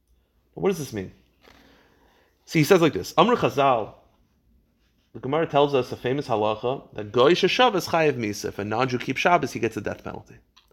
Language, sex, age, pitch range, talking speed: English, male, 30-49, 100-135 Hz, 190 wpm